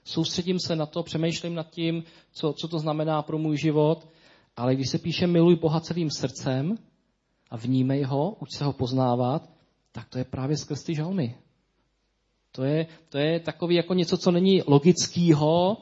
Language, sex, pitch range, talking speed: Czech, male, 125-165 Hz, 170 wpm